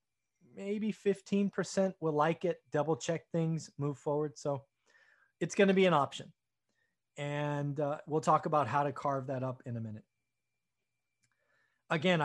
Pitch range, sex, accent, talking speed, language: 140-170 Hz, male, American, 155 wpm, English